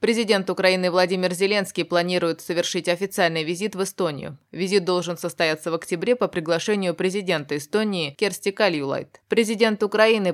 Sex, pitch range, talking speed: female, 165-200 Hz, 135 wpm